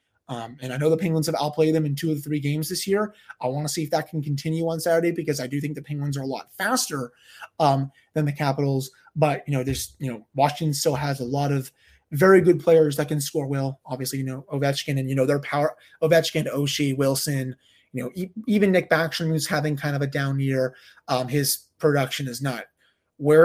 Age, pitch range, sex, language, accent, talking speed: 30-49, 130-165 Hz, male, English, American, 235 wpm